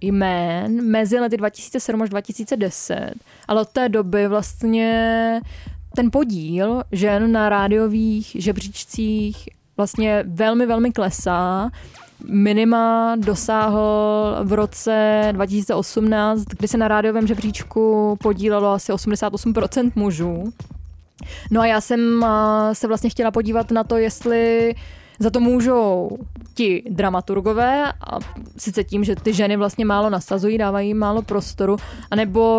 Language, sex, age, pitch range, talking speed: Czech, female, 20-39, 195-220 Hz, 120 wpm